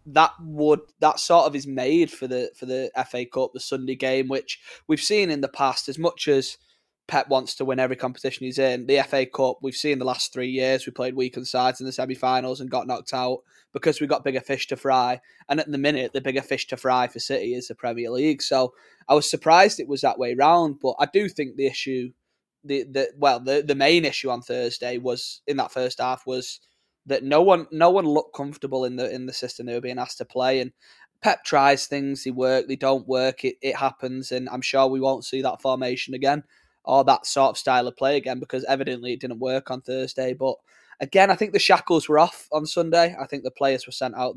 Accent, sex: British, male